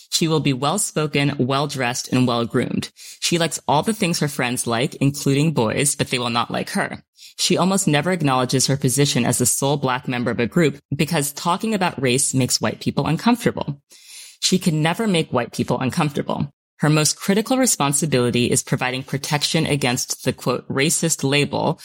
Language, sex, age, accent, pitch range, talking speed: English, female, 20-39, American, 125-155 Hz, 175 wpm